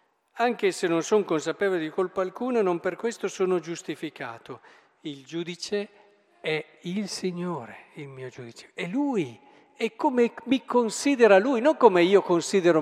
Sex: male